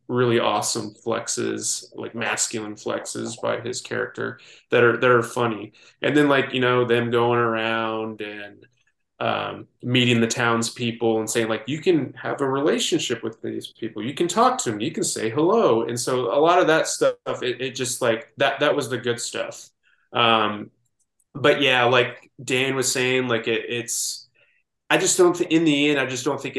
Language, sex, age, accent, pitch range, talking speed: English, male, 20-39, American, 115-125 Hz, 190 wpm